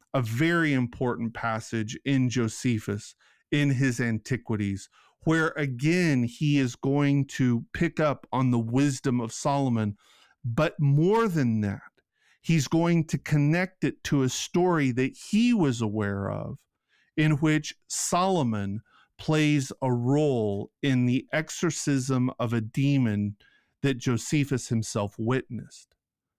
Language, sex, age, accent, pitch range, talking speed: English, male, 40-59, American, 120-155 Hz, 125 wpm